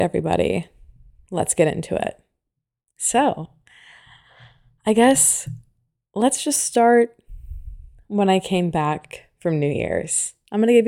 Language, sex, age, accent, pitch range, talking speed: English, female, 20-39, American, 150-185 Hz, 120 wpm